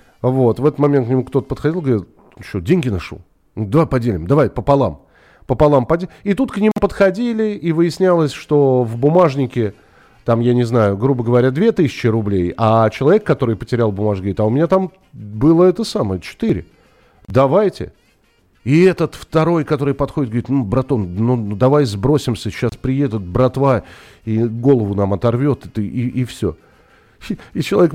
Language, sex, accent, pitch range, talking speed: Russian, male, native, 110-150 Hz, 160 wpm